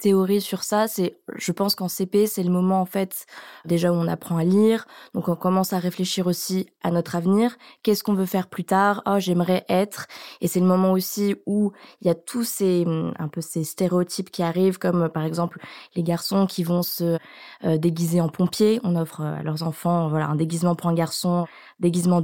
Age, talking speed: 20-39, 210 wpm